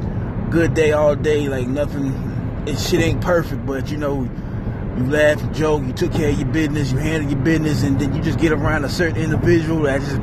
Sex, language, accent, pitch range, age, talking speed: male, English, American, 125-175 Hz, 20-39, 225 wpm